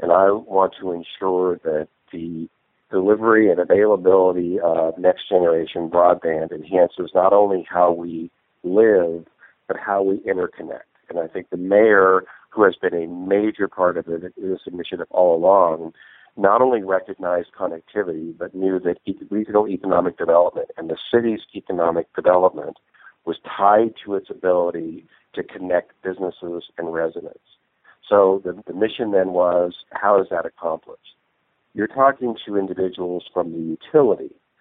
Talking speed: 140 wpm